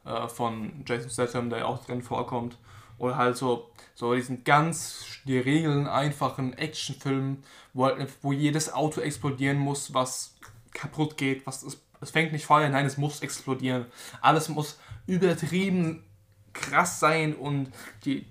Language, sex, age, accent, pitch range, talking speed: German, male, 20-39, German, 125-160 Hz, 145 wpm